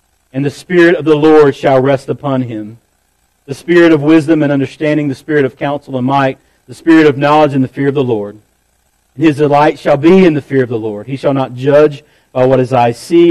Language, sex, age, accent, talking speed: English, male, 40-59, American, 230 wpm